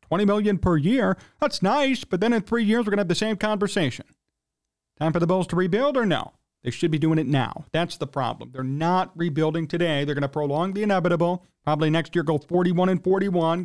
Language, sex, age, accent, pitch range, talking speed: English, male, 40-59, American, 135-195 Hz, 230 wpm